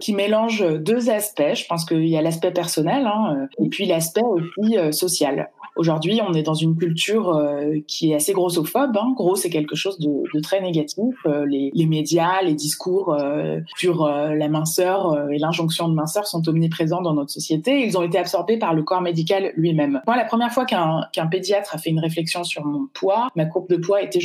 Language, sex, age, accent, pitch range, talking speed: French, female, 20-39, French, 155-195 Hz, 215 wpm